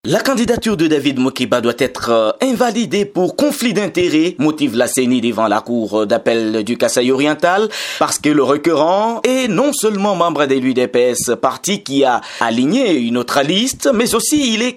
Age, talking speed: 30-49, 170 wpm